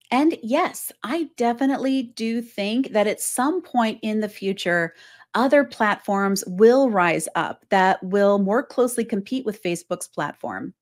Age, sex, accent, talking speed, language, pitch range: 40-59, female, American, 145 wpm, English, 195-265 Hz